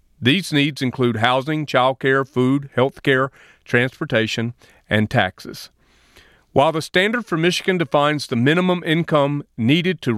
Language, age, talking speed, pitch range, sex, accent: English, 40-59, 135 wpm, 125-165 Hz, male, American